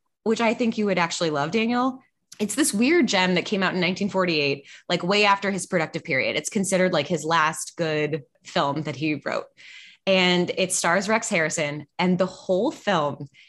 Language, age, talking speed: English, 20-39, 185 wpm